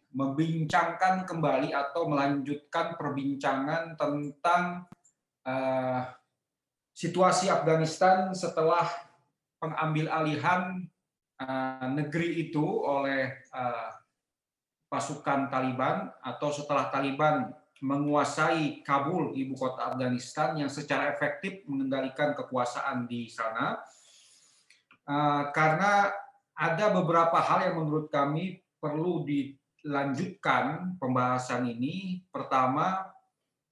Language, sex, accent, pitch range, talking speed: Indonesian, male, native, 135-165 Hz, 85 wpm